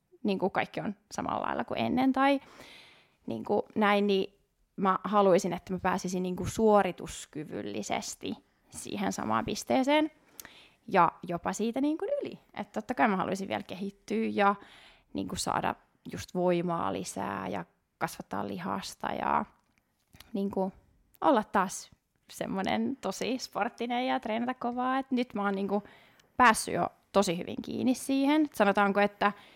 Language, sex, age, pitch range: Finnish, female, 20-39, 185-235 Hz